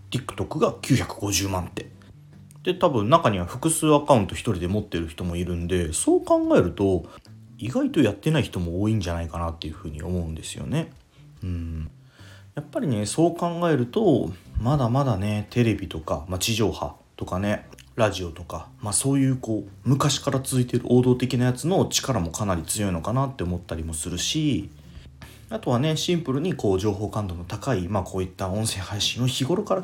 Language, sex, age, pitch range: Japanese, male, 30-49, 90-130 Hz